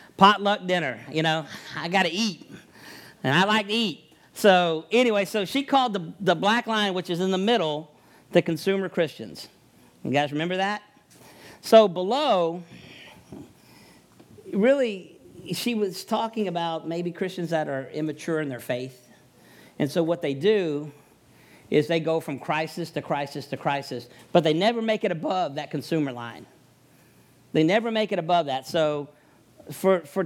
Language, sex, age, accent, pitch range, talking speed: English, male, 50-69, American, 145-190 Hz, 160 wpm